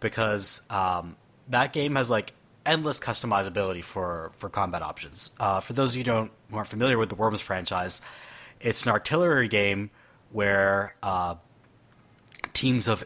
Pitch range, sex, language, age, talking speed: 100-125 Hz, male, English, 30-49, 155 wpm